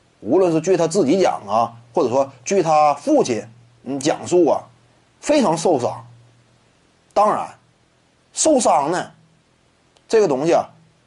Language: Chinese